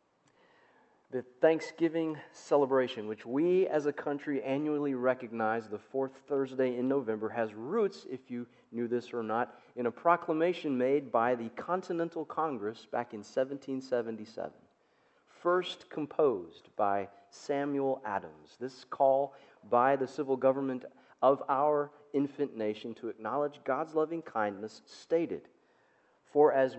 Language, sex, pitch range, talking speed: English, male, 120-150 Hz, 130 wpm